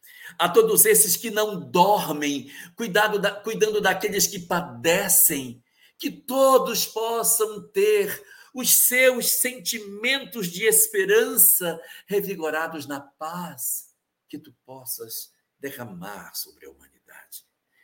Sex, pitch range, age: male, 145-235 Hz, 60-79